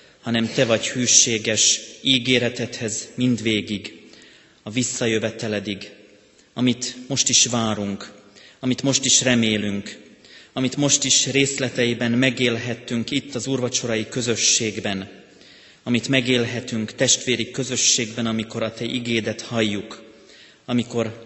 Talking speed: 100 wpm